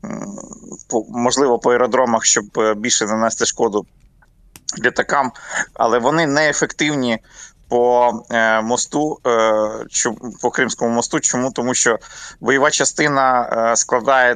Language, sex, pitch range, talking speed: Ukrainian, male, 110-130 Hz, 90 wpm